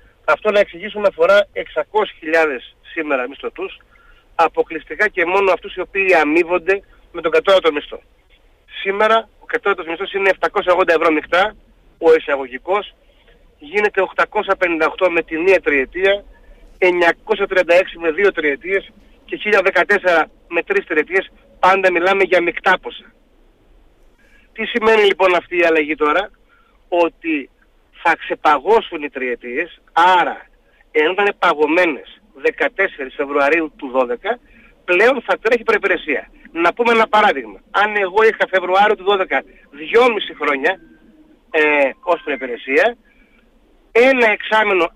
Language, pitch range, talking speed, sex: Greek, 165-220 Hz, 120 wpm, male